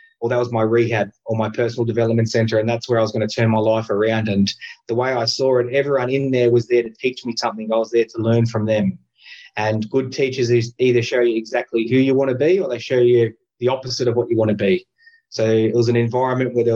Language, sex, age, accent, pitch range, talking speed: English, male, 20-39, Australian, 115-130 Hz, 265 wpm